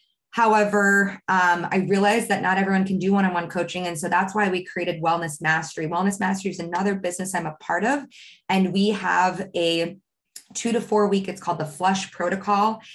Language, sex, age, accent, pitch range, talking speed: English, female, 20-39, American, 170-205 Hz, 180 wpm